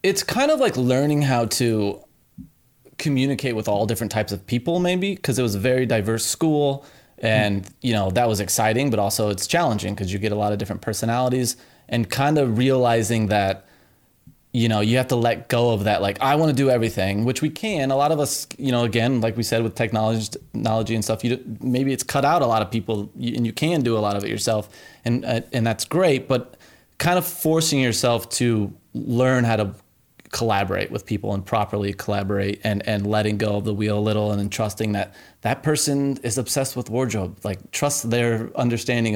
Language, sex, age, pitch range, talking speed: English, male, 20-39, 105-130 Hz, 215 wpm